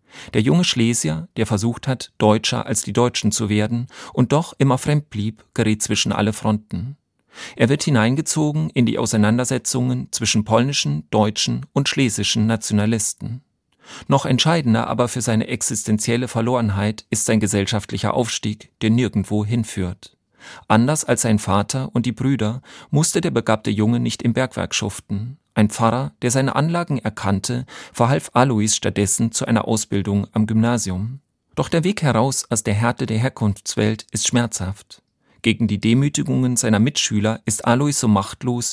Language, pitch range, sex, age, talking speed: German, 105-125 Hz, male, 40-59, 150 wpm